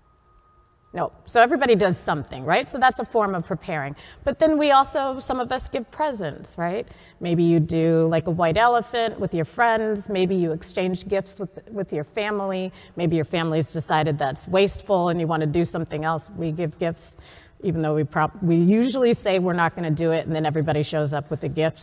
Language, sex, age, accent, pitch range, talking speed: English, female, 40-59, American, 160-220 Hz, 210 wpm